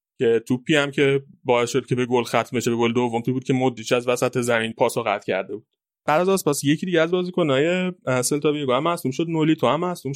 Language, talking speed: Persian, 250 wpm